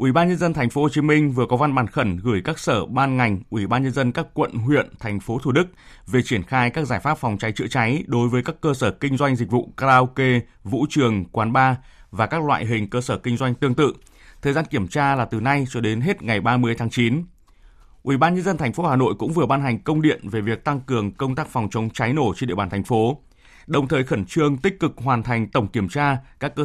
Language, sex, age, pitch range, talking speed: Vietnamese, male, 20-39, 115-140 Hz, 270 wpm